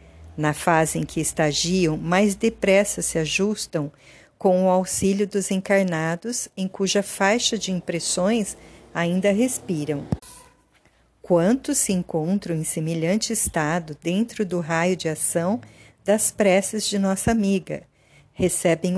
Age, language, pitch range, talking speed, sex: 50-69, Portuguese, 165-205 Hz, 120 wpm, female